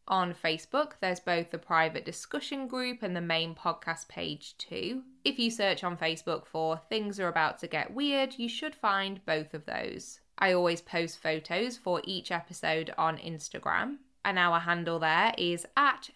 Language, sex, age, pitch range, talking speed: English, female, 20-39, 165-210 Hz, 175 wpm